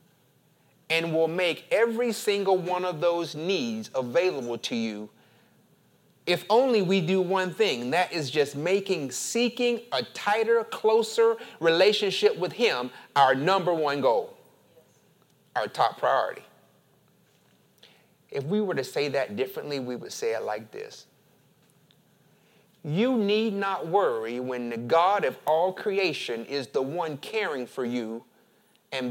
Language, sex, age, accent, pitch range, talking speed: English, male, 30-49, American, 145-220 Hz, 135 wpm